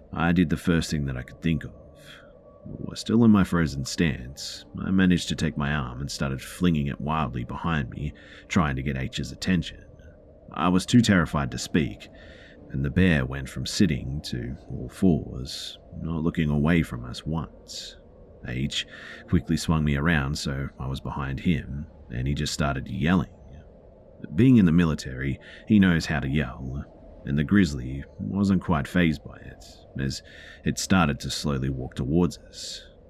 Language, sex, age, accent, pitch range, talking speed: English, male, 40-59, Australian, 70-90 Hz, 170 wpm